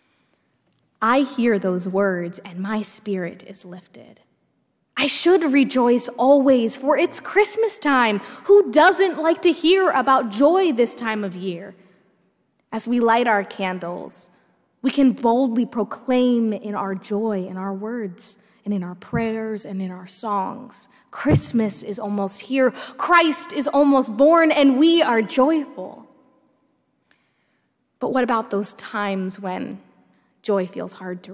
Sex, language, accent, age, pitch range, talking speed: female, English, American, 20-39, 200-265 Hz, 140 wpm